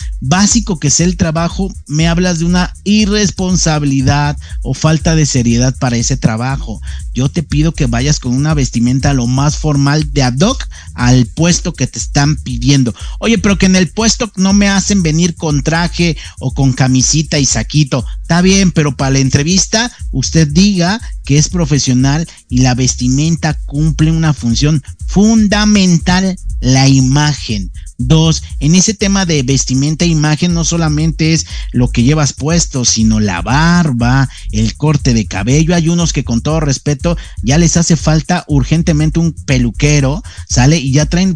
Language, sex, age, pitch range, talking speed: Spanish, male, 50-69, 130-170 Hz, 165 wpm